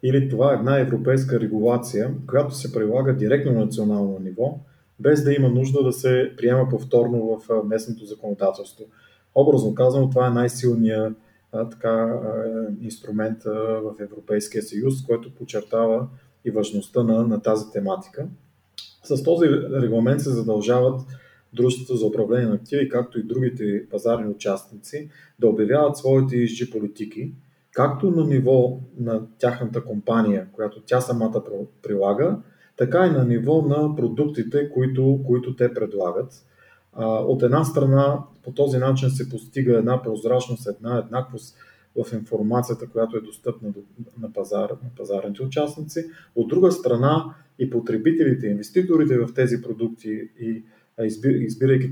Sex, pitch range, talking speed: male, 110-135 Hz, 130 wpm